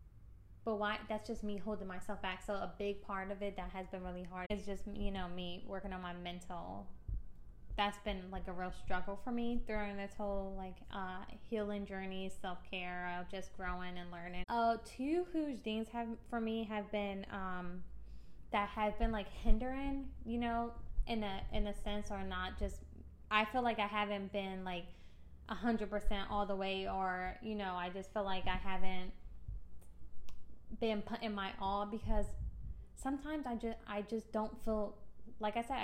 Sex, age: female, 20-39